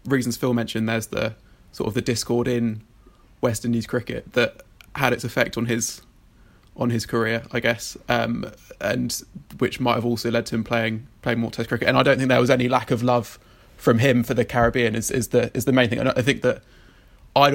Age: 20-39